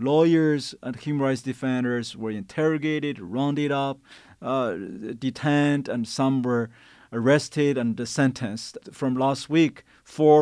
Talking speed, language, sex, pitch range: 120 wpm, English, male, 130-155 Hz